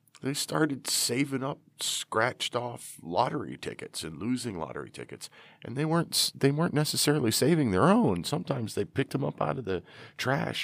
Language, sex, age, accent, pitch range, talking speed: English, male, 40-59, American, 90-140 Hz, 170 wpm